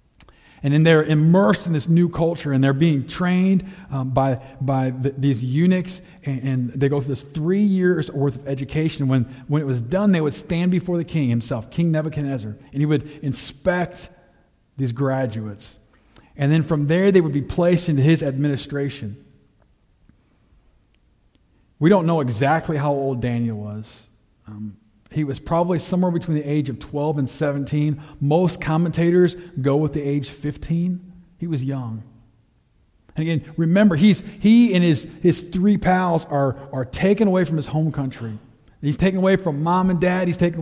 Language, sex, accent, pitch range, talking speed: English, male, American, 135-175 Hz, 175 wpm